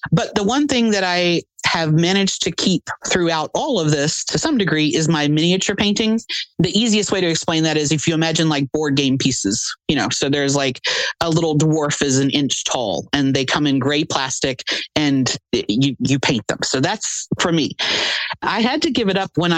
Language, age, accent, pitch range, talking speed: English, 30-49, American, 150-190 Hz, 210 wpm